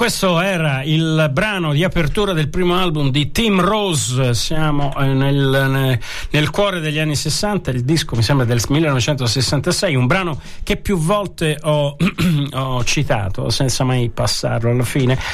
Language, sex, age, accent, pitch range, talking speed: Italian, male, 50-69, native, 125-160 Hz, 155 wpm